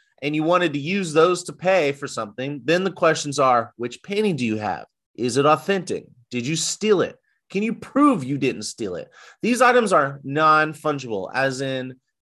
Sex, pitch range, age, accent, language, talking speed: male, 130-170 Hz, 30-49, American, English, 190 wpm